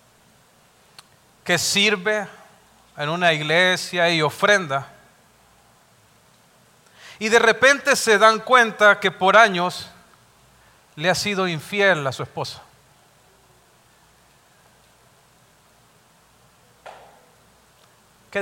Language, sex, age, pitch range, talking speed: English, male, 40-59, 145-200 Hz, 80 wpm